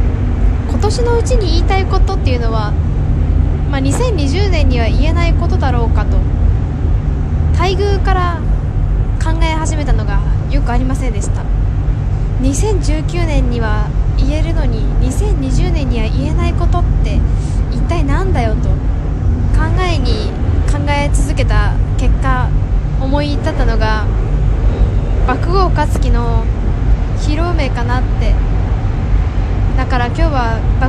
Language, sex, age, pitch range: Japanese, female, 20-39, 85-110 Hz